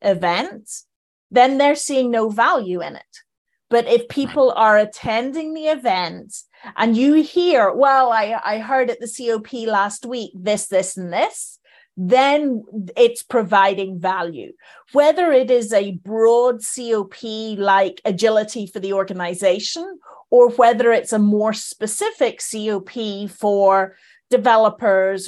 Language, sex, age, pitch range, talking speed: English, female, 30-49, 200-265 Hz, 130 wpm